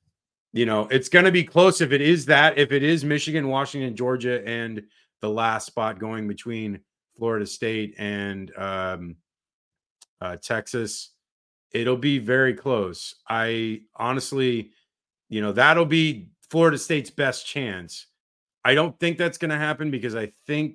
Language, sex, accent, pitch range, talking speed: English, male, American, 105-135 Hz, 155 wpm